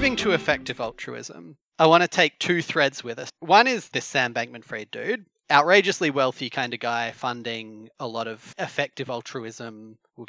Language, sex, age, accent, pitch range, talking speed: English, male, 30-49, Australian, 120-165 Hz, 175 wpm